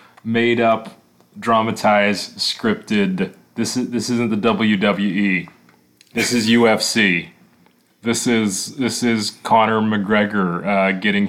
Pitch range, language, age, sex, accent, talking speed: 100-135 Hz, English, 30-49, male, American, 110 wpm